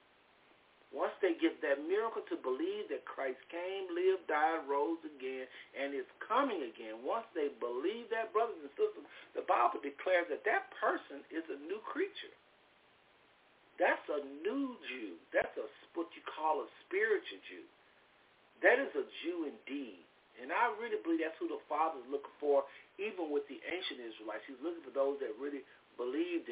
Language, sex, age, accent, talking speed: English, male, 50-69, American, 165 wpm